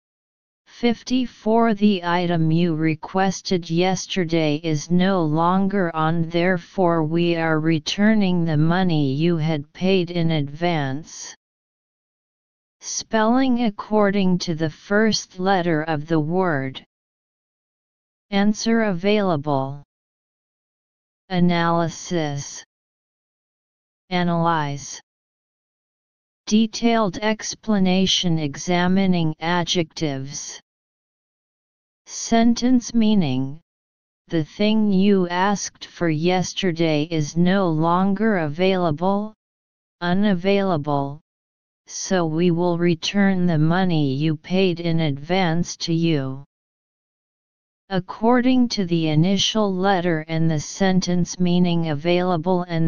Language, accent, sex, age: English, American, female, 40-59